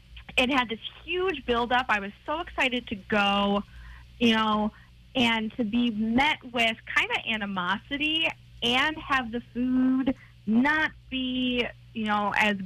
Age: 20-39